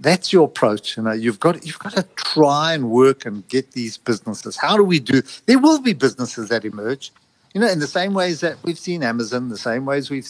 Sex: male